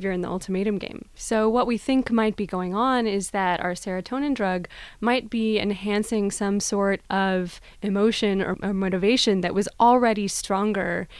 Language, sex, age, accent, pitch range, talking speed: English, female, 20-39, American, 185-215 Hz, 165 wpm